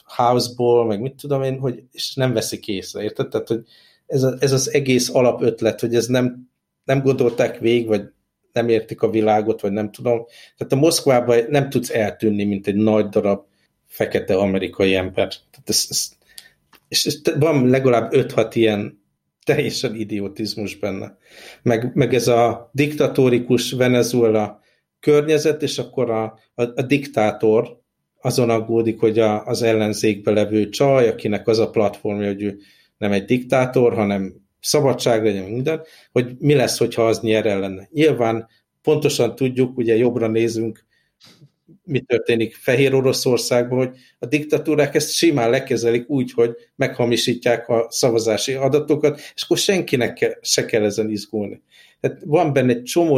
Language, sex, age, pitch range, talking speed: Hungarian, male, 50-69, 110-135 Hz, 150 wpm